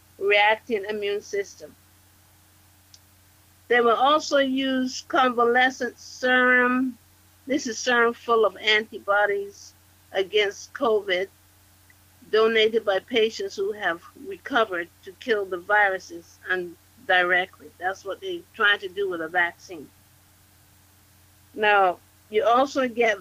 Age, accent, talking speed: 50-69, American, 110 wpm